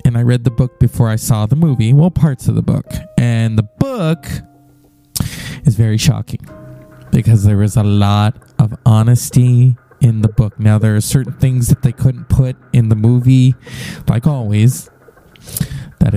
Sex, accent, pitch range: male, American, 120-150 Hz